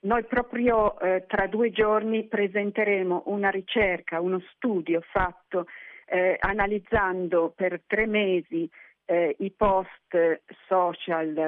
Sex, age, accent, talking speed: female, 50-69, native, 110 wpm